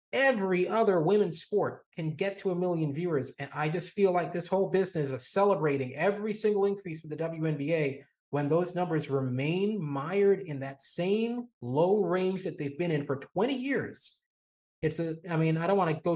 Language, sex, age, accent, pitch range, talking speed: English, male, 30-49, American, 140-210 Hz, 195 wpm